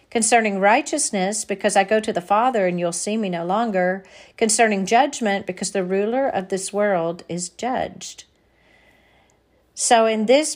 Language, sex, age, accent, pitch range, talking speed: English, female, 50-69, American, 190-230 Hz, 155 wpm